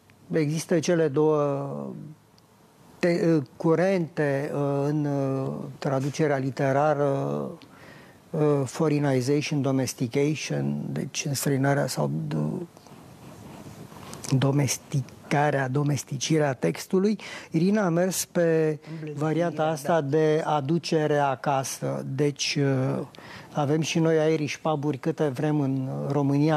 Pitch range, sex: 140-170 Hz, male